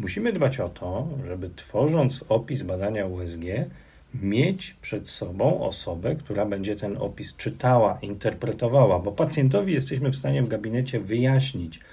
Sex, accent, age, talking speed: male, native, 40-59, 135 wpm